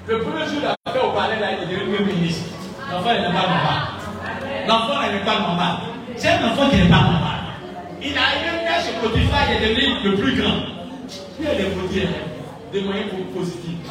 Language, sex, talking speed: French, male, 210 wpm